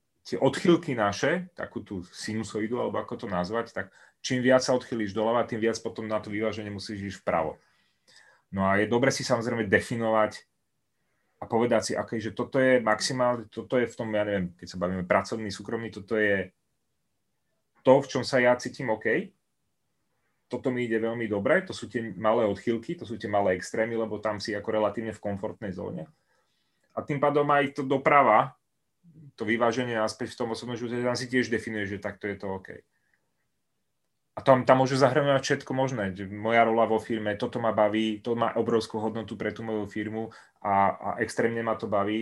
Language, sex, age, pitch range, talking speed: Czech, male, 30-49, 105-125 Hz, 190 wpm